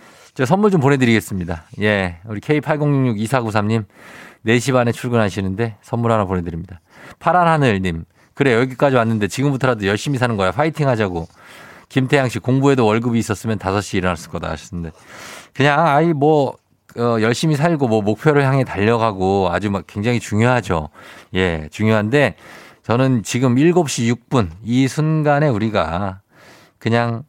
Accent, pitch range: native, 100-140 Hz